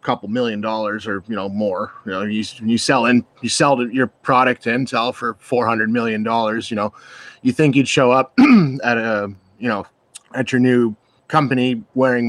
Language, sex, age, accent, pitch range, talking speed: English, male, 30-49, American, 125-165 Hz, 190 wpm